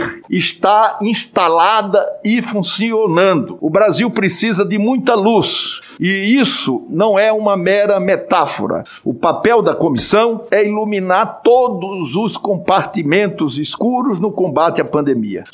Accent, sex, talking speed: Brazilian, male, 120 wpm